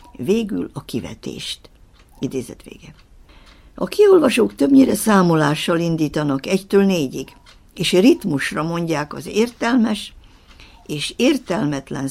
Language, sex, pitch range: Hungarian, female, 155-220 Hz